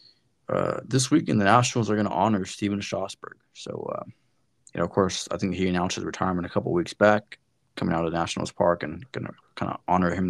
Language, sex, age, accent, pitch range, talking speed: English, male, 20-39, American, 90-105 Hz, 235 wpm